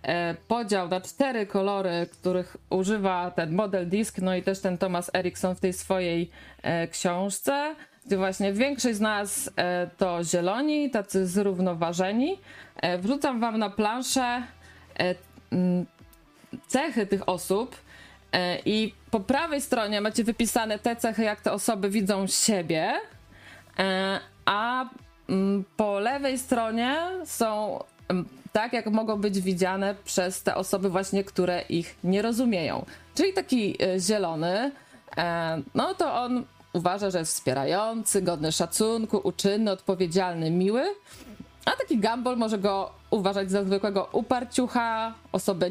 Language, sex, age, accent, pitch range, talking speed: Polish, female, 20-39, native, 180-225 Hz, 120 wpm